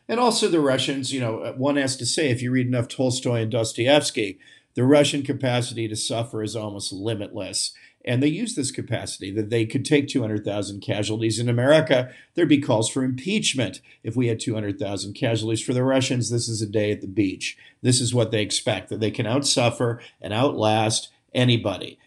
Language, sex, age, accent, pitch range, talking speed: English, male, 50-69, American, 110-135 Hz, 190 wpm